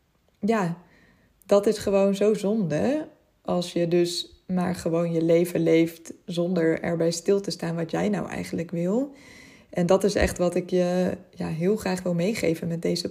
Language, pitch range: Dutch, 175-200 Hz